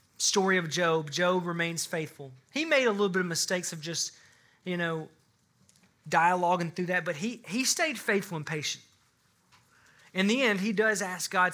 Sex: male